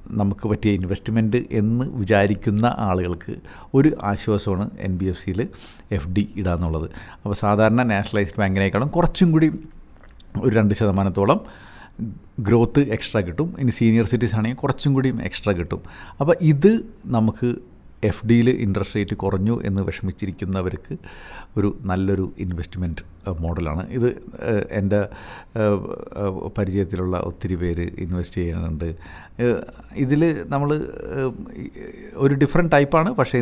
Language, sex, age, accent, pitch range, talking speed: Malayalam, male, 50-69, native, 90-110 Hz, 110 wpm